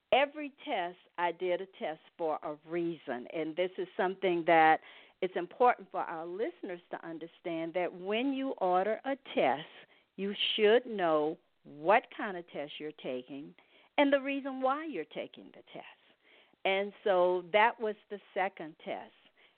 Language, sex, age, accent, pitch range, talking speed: English, female, 50-69, American, 165-210 Hz, 155 wpm